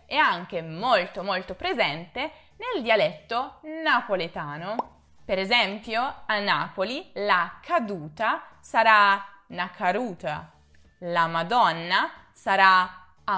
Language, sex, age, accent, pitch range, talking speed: Italian, female, 20-39, native, 175-245 Hz, 90 wpm